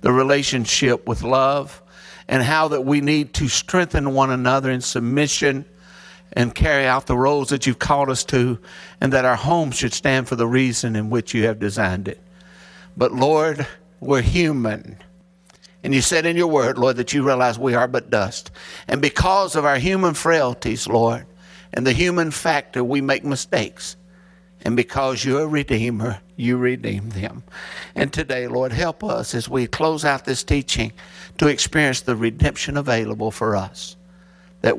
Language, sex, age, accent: English, male, 60-79, American